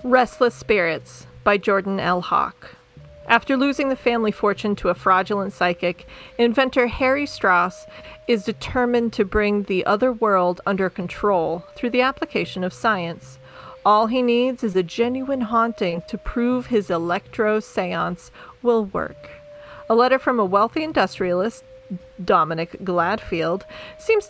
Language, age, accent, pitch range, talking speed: English, 40-59, American, 185-245 Hz, 135 wpm